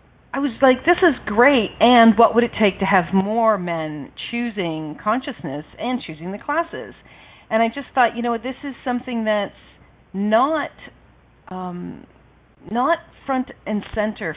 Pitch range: 180-225 Hz